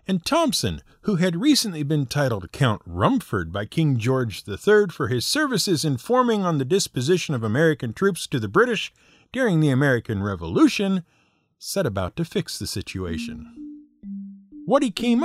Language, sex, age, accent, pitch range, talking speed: English, male, 50-69, American, 120-195 Hz, 155 wpm